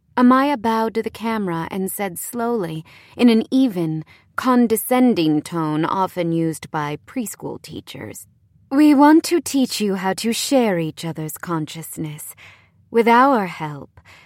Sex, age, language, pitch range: female, 30-49, English, 155-225 Hz